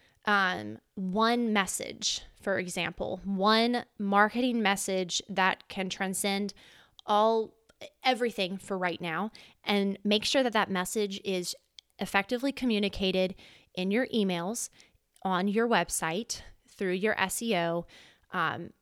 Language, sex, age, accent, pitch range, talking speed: English, female, 20-39, American, 180-210 Hz, 110 wpm